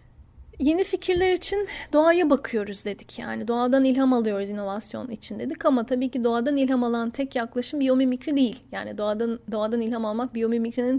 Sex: female